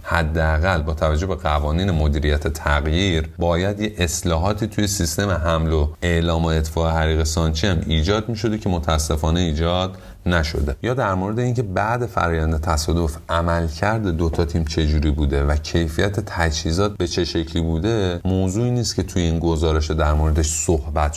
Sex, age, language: male, 30-49, Persian